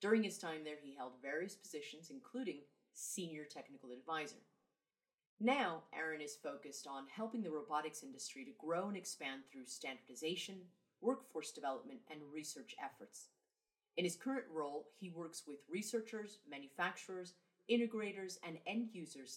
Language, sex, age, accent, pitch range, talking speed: English, female, 30-49, American, 150-225 Hz, 140 wpm